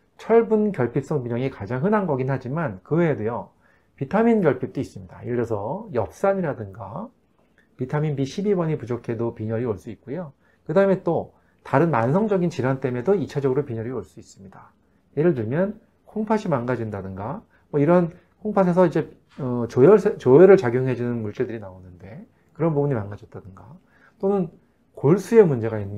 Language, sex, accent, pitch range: Korean, male, native, 115-180 Hz